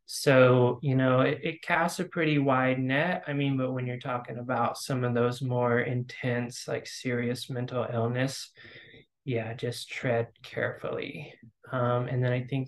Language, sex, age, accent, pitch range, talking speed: English, male, 20-39, American, 120-140 Hz, 165 wpm